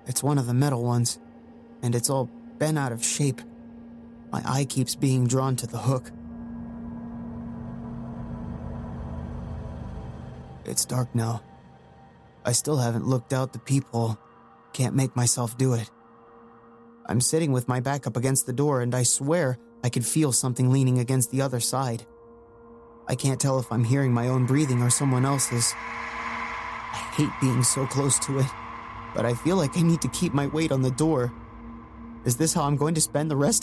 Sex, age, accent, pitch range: male, 30-49, American, 115-140 Hz